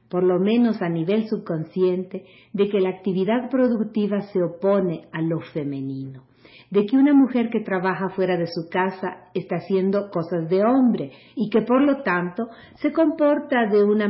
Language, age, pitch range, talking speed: Spanish, 50-69, 180-225 Hz, 170 wpm